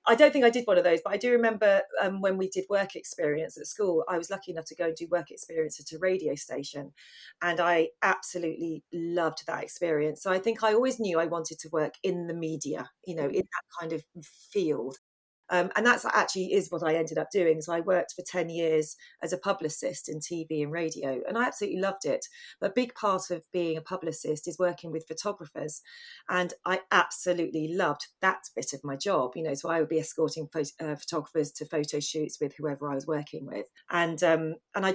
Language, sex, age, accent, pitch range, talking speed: English, female, 30-49, British, 160-190 Hz, 225 wpm